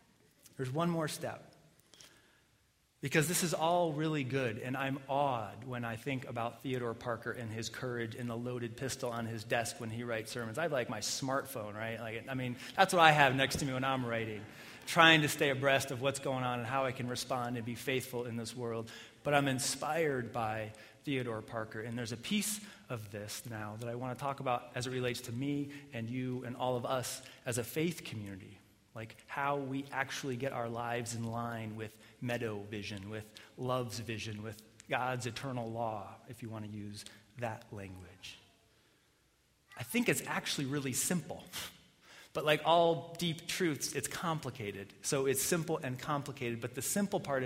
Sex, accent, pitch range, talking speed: male, American, 115-140 Hz, 195 wpm